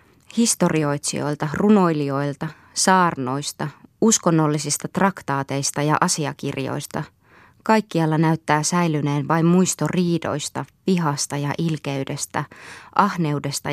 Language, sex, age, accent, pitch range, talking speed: Finnish, female, 20-39, native, 145-180 Hz, 75 wpm